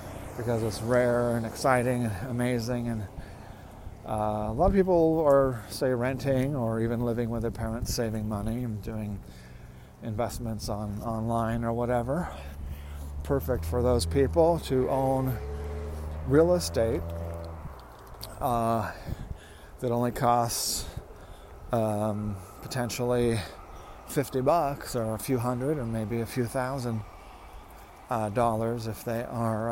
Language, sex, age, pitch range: English, male, 40-59, 105-125 Hz